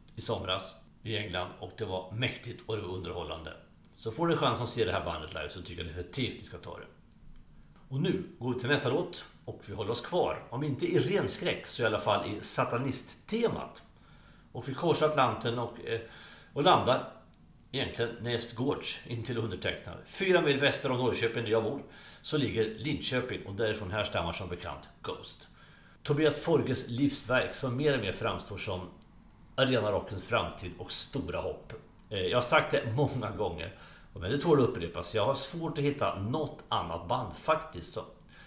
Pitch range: 95-135 Hz